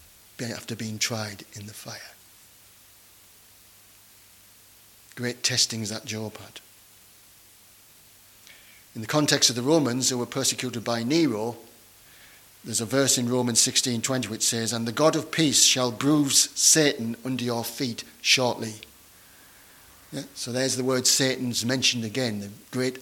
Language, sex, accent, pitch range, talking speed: English, male, British, 105-135 Hz, 140 wpm